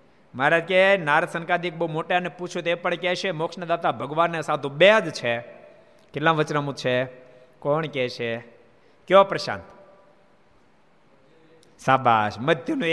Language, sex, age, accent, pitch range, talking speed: Gujarati, male, 50-69, native, 125-170 Hz, 70 wpm